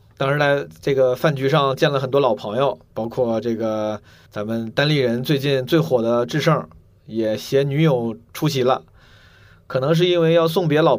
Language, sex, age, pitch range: Chinese, male, 20-39, 115-150 Hz